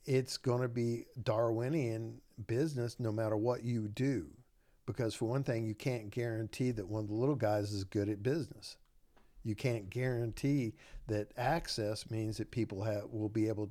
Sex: male